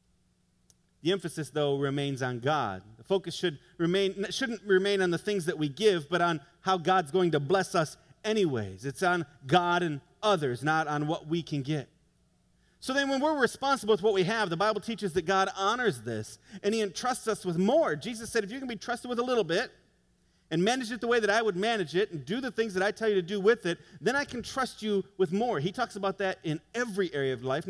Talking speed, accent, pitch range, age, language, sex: 235 wpm, American, 140-205 Hz, 40-59, English, male